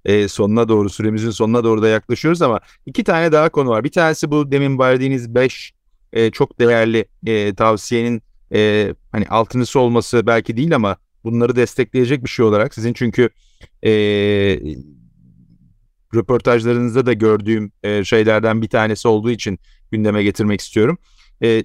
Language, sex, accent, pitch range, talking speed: Turkish, male, native, 110-130 Hz, 145 wpm